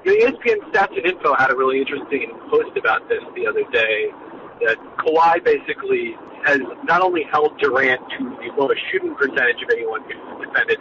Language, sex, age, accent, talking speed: English, male, 40-59, American, 190 wpm